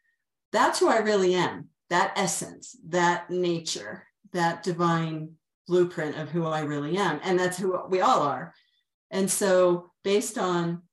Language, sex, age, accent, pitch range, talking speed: English, female, 40-59, American, 170-200 Hz, 150 wpm